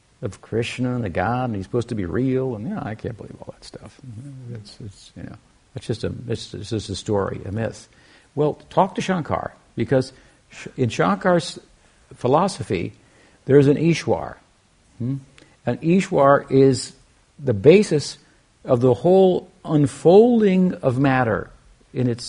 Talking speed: 160 wpm